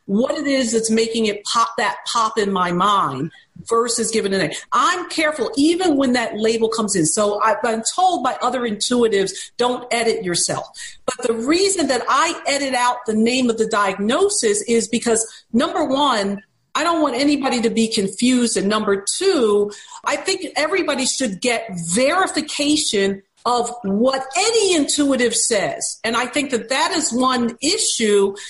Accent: American